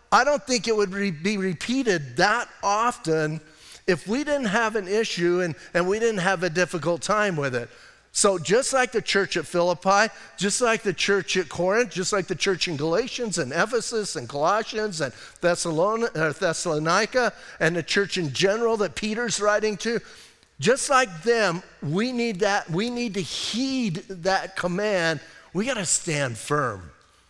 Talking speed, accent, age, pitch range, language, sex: 165 wpm, American, 50-69, 170-220 Hz, English, male